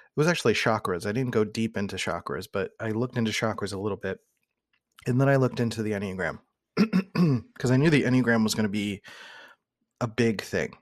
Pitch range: 105-120 Hz